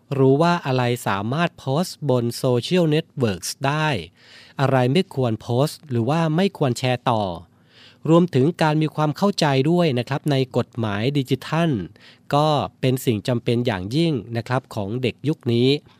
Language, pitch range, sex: Thai, 110-135 Hz, male